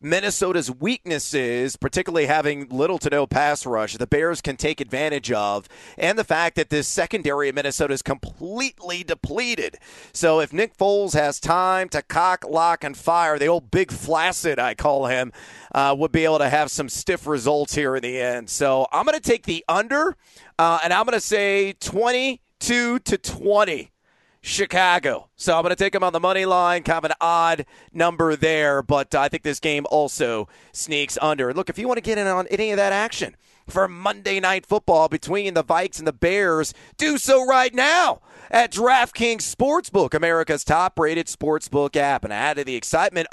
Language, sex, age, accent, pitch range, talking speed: English, male, 40-59, American, 145-195 Hz, 185 wpm